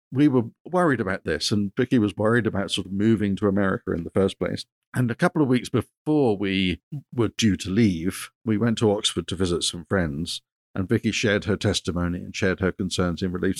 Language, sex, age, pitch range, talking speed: English, male, 50-69, 95-115 Hz, 215 wpm